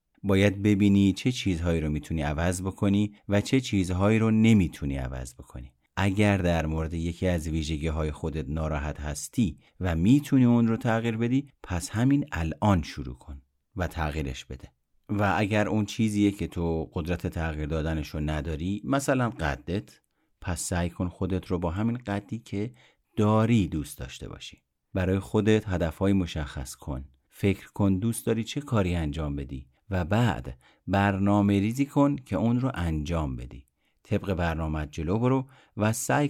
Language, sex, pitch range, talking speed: Persian, male, 80-105 Hz, 155 wpm